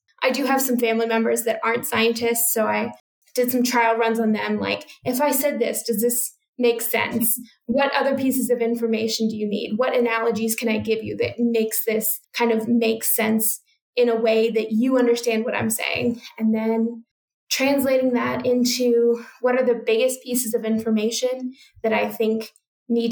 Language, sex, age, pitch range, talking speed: English, female, 10-29, 225-250 Hz, 185 wpm